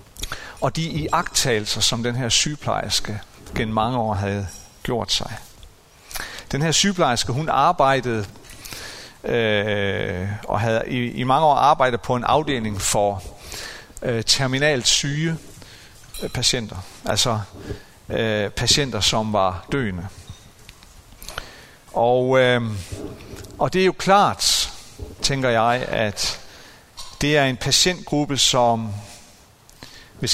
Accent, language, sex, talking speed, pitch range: native, Danish, male, 105 wpm, 105-140 Hz